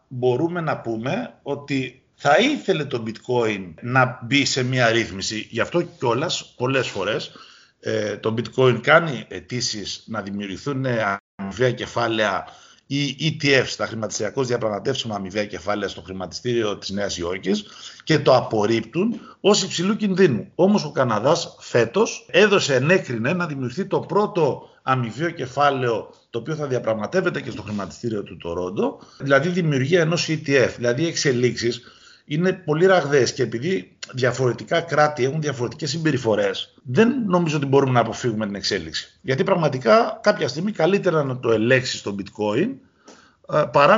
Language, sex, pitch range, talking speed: Greek, male, 120-170 Hz, 135 wpm